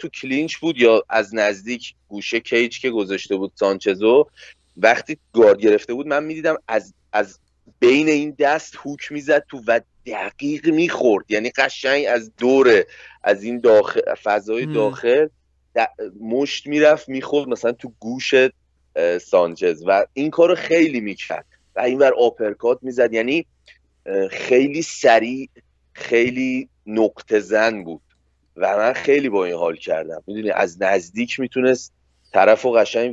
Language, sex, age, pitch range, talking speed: Persian, male, 30-49, 100-145 Hz, 145 wpm